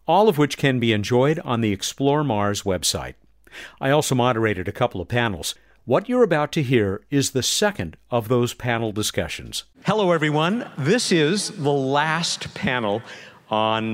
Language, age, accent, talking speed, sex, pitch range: English, 50-69, American, 165 wpm, male, 120-180 Hz